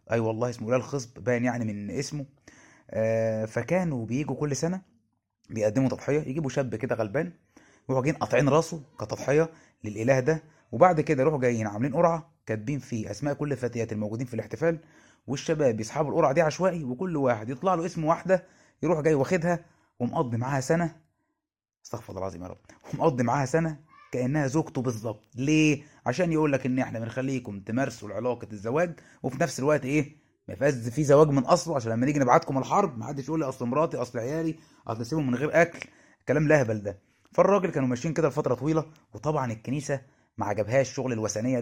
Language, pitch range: Arabic, 120-155 Hz